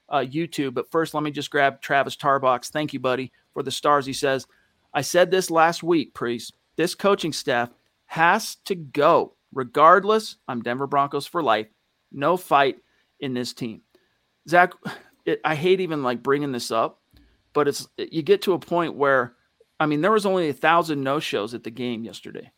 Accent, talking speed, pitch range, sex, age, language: American, 185 wpm, 130-165 Hz, male, 40-59, English